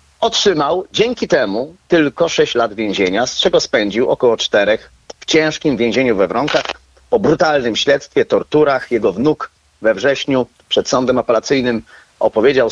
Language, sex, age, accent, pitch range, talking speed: Polish, male, 40-59, native, 115-155 Hz, 135 wpm